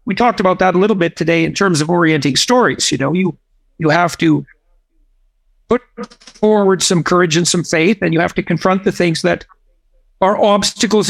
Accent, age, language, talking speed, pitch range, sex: American, 50-69, English, 195 wpm, 170-215 Hz, male